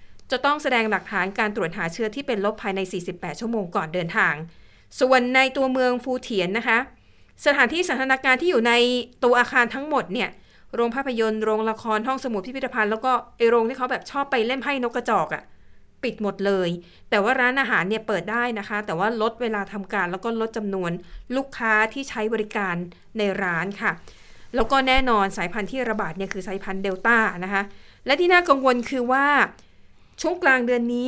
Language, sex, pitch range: Thai, female, 195-245 Hz